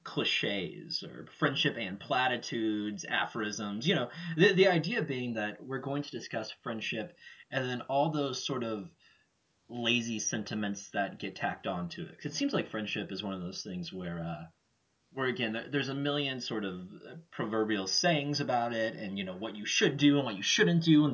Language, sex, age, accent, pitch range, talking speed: English, male, 20-39, American, 110-165 Hz, 195 wpm